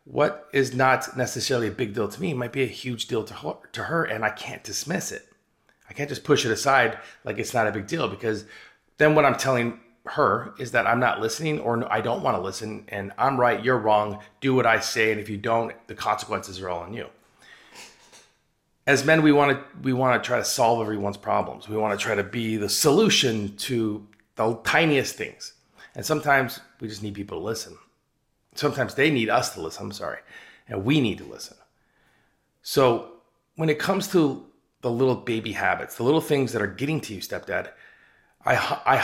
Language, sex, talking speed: English, male, 205 wpm